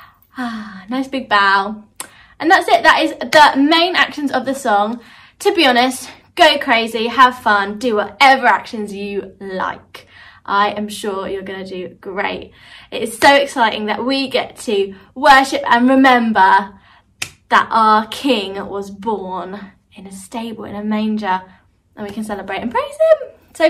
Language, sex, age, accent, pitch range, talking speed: English, female, 20-39, British, 210-295 Hz, 165 wpm